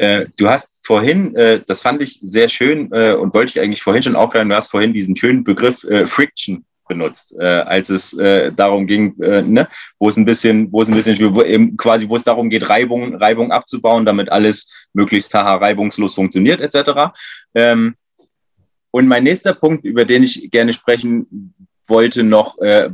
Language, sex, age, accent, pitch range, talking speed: German, male, 30-49, German, 105-130 Hz, 190 wpm